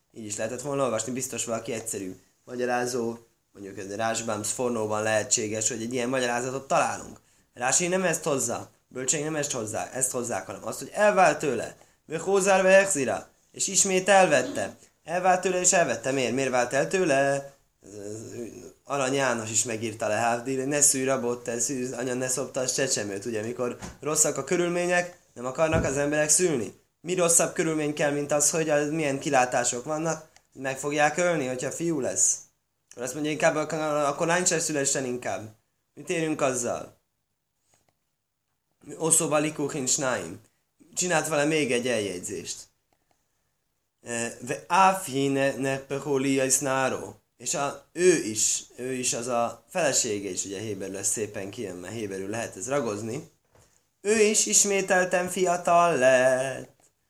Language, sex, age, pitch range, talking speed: Hungarian, male, 20-39, 120-160 Hz, 145 wpm